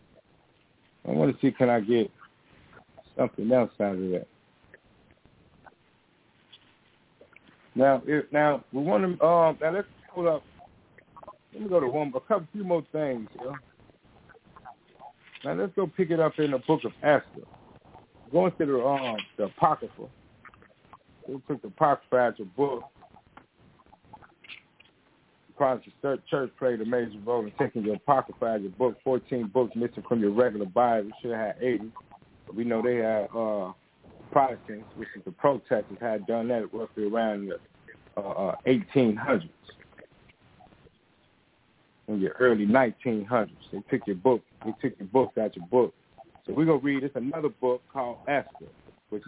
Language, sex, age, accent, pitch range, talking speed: English, male, 60-79, American, 110-145 Hz, 155 wpm